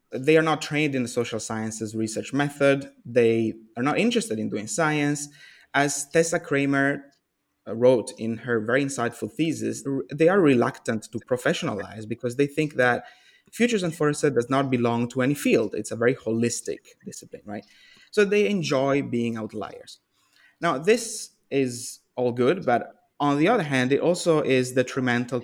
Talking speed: 165 wpm